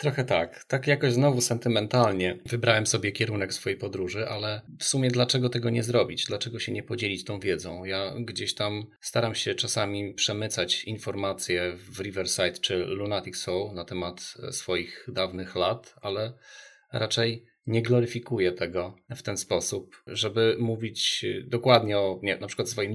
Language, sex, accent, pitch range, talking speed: Polish, male, native, 100-125 Hz, 155 wpm